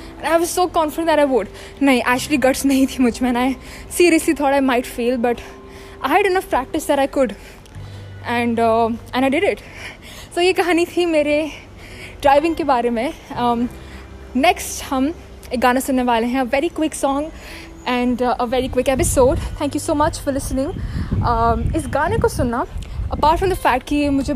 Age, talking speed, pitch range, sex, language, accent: 20-39, 170 wpm, 245-305 Hz, female, Hindi, native